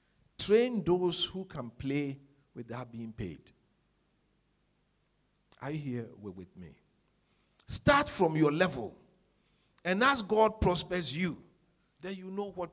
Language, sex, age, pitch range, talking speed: English, male, 50-69, 120-180 Hz, 125 wpm